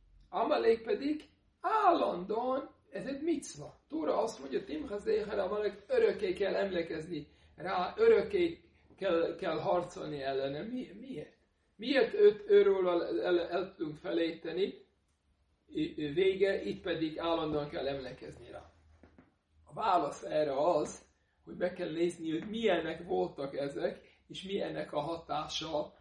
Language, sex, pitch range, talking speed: Hungarian, male, 135-210 Hz, 120 wpm